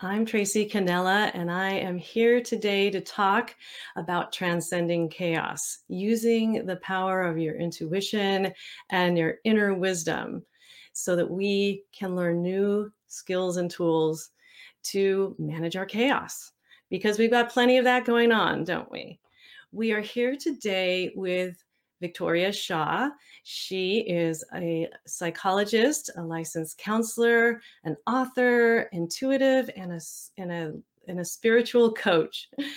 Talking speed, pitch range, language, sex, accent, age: 125 wpm, 175-225 Hz, English, female, American, 30-49